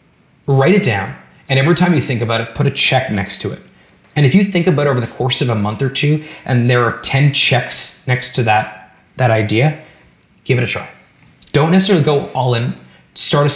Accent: American